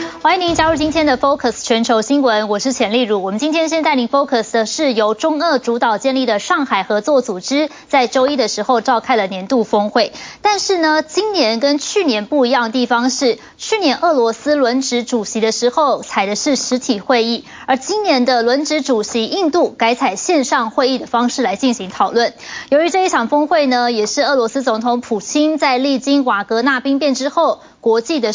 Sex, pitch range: female, 230-310 Hz